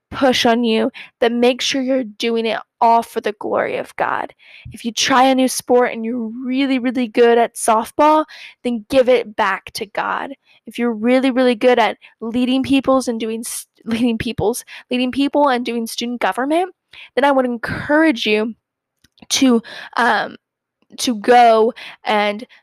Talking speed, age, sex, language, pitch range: 165 wpm, 10-29, female, English, 230-265 Hz